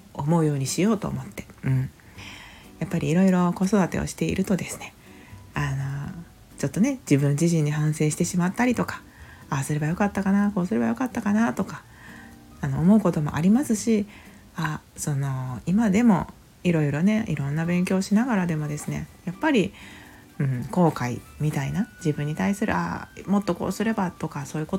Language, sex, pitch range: Japanese, female, 145-200 Hz